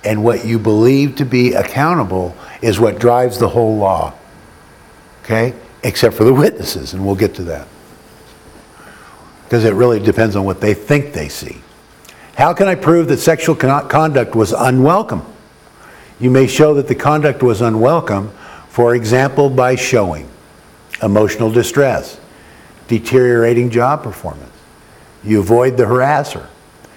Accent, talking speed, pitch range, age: American, 140 wpm, 105-135 Hz, 50-69